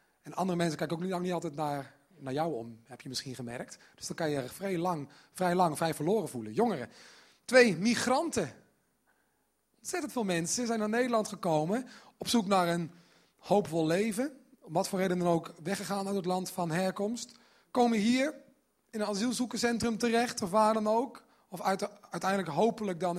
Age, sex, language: 30-49, male, Dutch